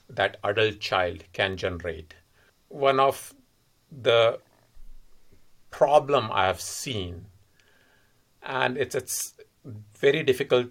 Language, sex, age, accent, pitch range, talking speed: English, male, 50-69, Indian, 100-130 Hz, 95 wpm